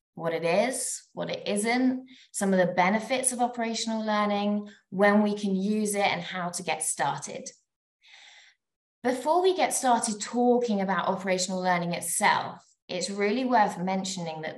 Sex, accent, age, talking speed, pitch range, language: female, British, 20-39, 150 wpm, 175-225 Hz, English